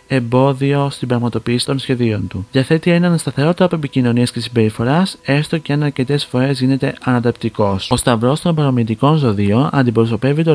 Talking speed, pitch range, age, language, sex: 155 wpm, 115-150 Hz, 40-59, Greek, male